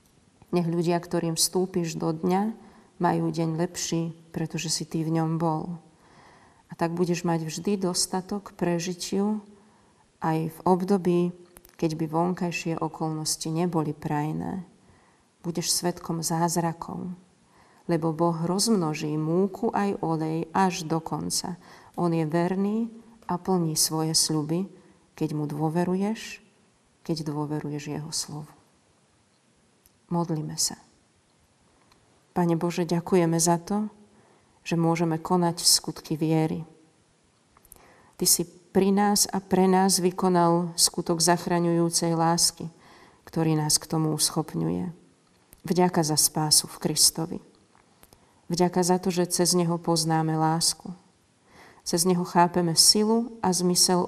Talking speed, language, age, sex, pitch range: 115 wpm, Slovak, 40-59, female, 160-185 Hz